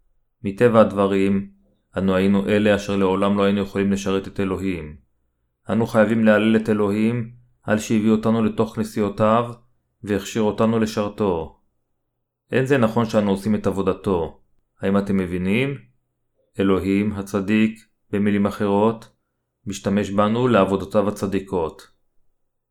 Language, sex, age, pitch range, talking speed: Hebrew, male, 30-49, 95-110 Hz, 115 wpm